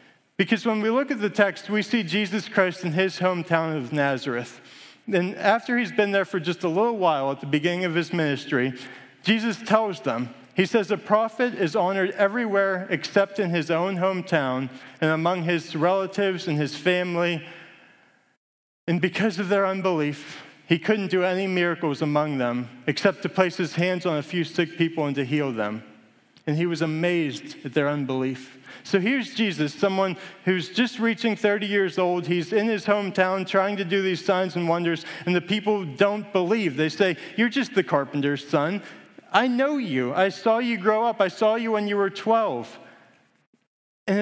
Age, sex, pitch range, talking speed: 40-59, male, 160-210 Hz, 185 wpm